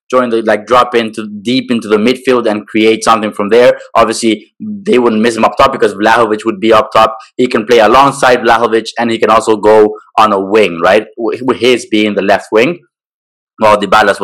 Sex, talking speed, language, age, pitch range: male, 210 wpm, English, 20-39, 105-120 Hz